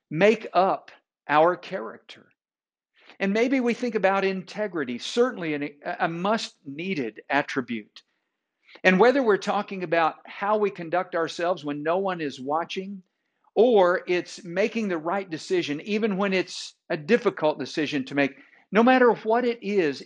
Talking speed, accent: 140 wpm, American